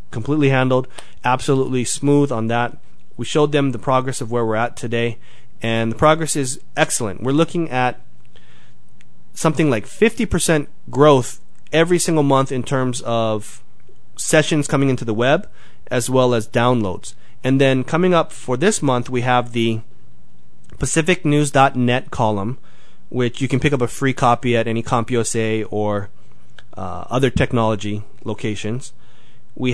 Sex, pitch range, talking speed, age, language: male, 110-135 Hz, 145 wpm, 30-49, English